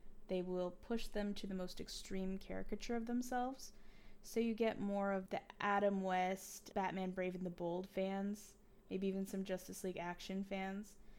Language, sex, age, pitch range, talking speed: English, female, 10-29, 185-210 Hz, 170 wpm